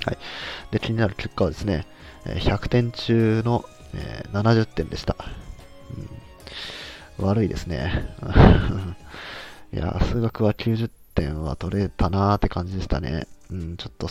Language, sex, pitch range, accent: Japanese, male, 85-110 Hz, native